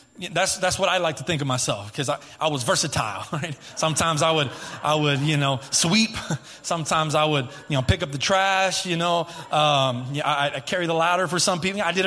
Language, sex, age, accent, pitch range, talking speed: English, male, 20-39, American, 155-195 Hz, 230 wpm